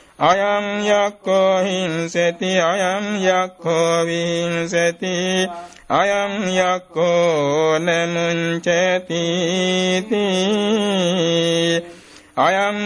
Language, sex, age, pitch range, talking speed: Vietnamese, male, 60-79, 170-190 Hz, 50 wpm